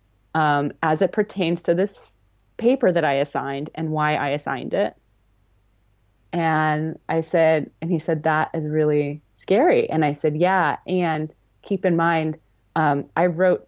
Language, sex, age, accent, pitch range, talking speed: English, female, 30-49, American, 155-195 Hz, 160 wpm